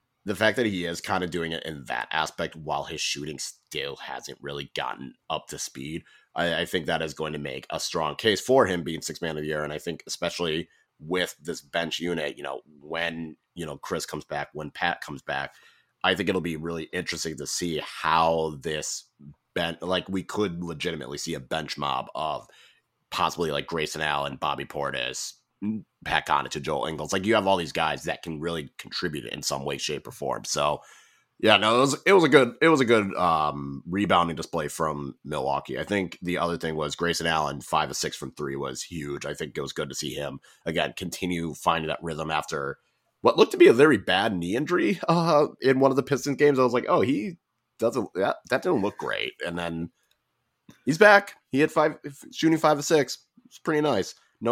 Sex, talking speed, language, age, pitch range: male, 220 wpm, English, 30-49, 80-110 Hz